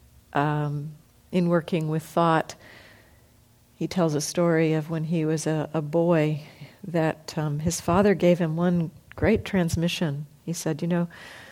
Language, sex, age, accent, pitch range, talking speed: English, female, 50-69, American, 145-185 Hz, 150 wpm